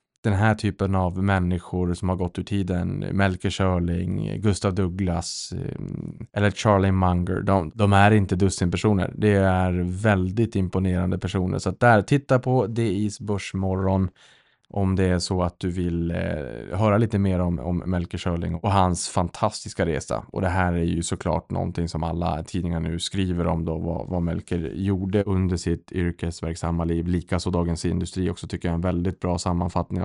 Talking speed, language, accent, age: 170 wpm, Swedish, Norwegian, 20-39